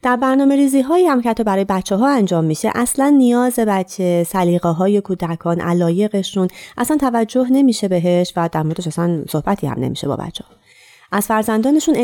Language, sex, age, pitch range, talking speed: Persian, female, 30-49, 165-245 Hz, 165 wpm